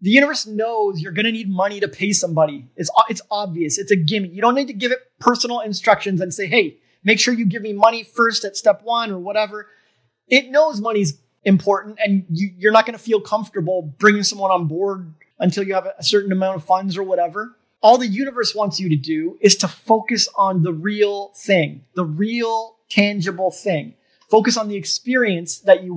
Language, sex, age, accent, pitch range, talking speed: English, male, 30-49, American, 185-225 Hz, 210 wpm